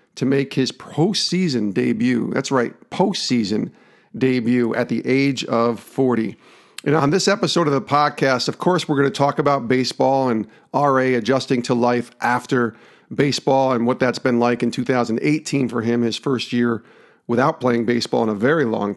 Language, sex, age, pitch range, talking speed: English, male, 40-59, 115-140 Hz, 175 wpm